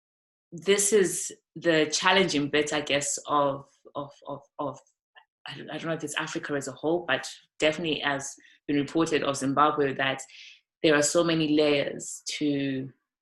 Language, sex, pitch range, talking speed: English, female, 145-170 Hz, 150 wpm